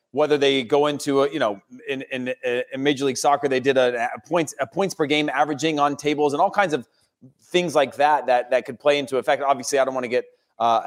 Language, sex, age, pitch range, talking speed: English, male, 30-49, 125-150 Hz, 250 wpm